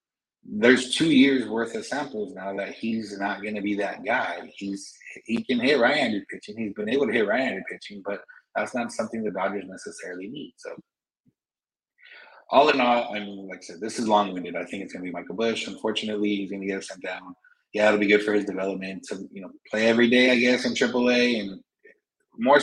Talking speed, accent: 215 wpm, American